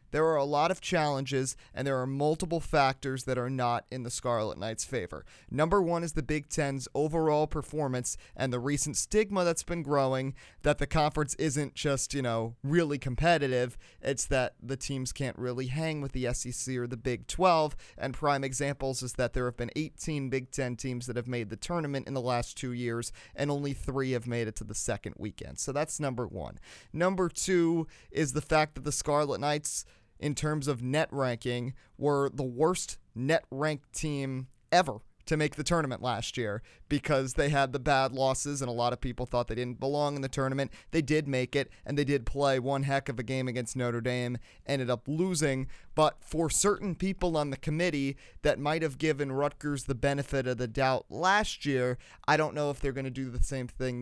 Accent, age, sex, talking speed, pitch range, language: American, 30-49, male, 205 wpm, 125-150 Hz, English